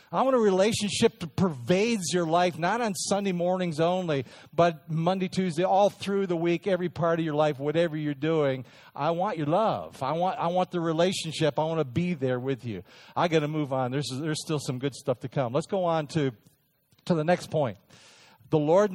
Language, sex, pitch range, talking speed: English, male, 140-180 Hz, 215 wpm